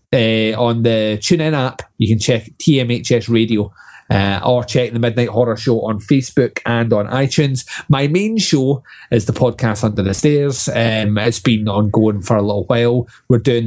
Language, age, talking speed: English, 30-49, 185 wpm